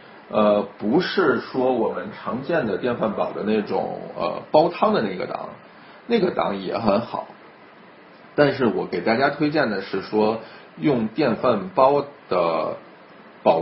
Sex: male